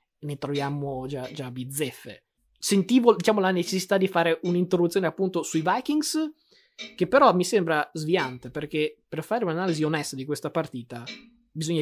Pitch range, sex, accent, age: 150-195 Hz, male, native, 20-39